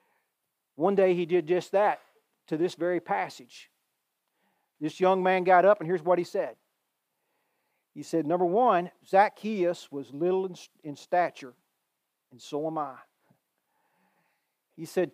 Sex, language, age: male, English, 40-59